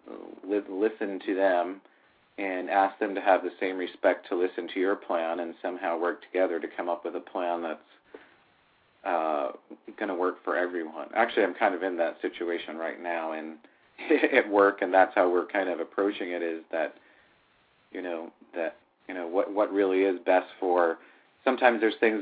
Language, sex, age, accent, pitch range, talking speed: English, male, 40-59, American, 85-105 Hz, 185 wpm